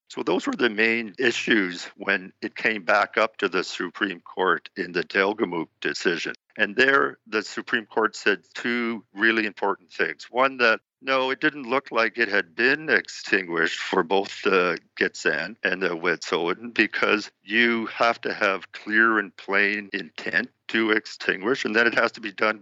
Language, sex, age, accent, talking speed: English, male, 50-69, American, 170 wpm